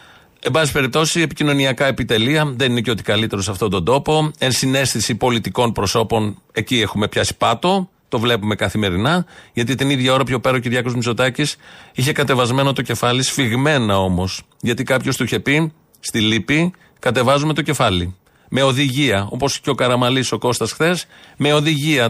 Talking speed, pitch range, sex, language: 165 wpm, 115-150 Hz, male, Greek